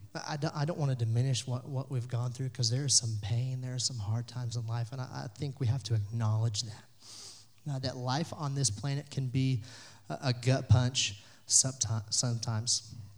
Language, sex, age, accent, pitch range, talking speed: English, male, 30-49, American, 110-145 Hz, 180 wpm